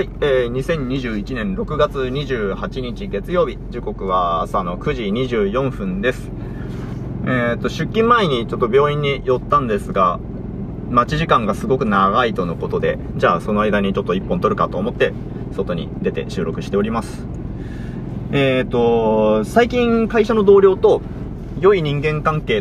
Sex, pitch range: male, 105-155 Hz